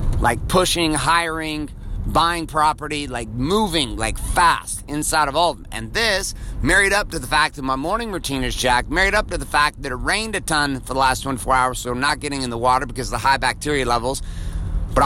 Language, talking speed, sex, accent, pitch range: English, 225 wpm, male, American, 110-155 Hz